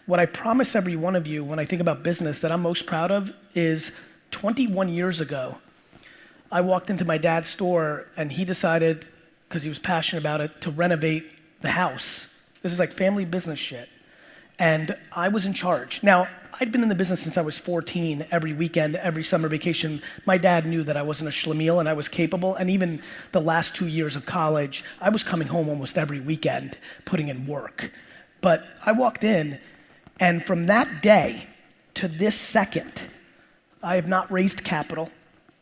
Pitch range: 160-185 Hz